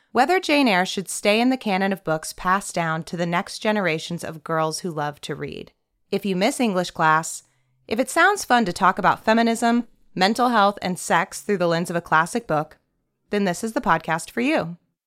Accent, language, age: American, English, 30-49